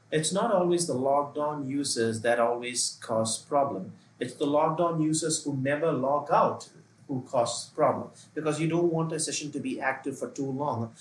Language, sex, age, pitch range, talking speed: English, male, 30-49, 120-160 Hz, 180 wpm